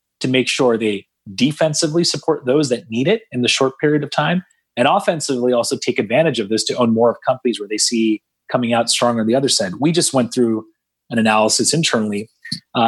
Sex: male